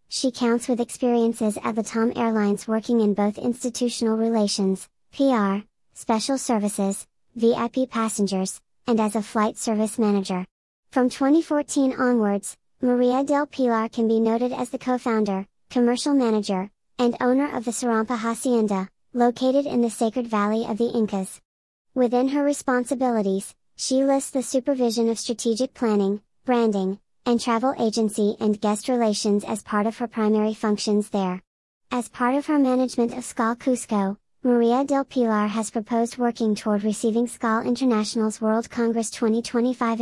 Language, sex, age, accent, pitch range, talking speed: English, male, 40-59, American, 215-250 Hz, 145 wpm